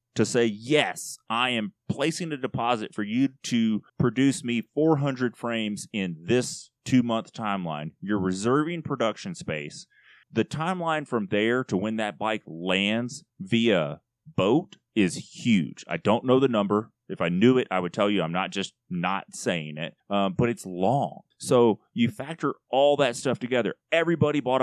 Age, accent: 30-49, American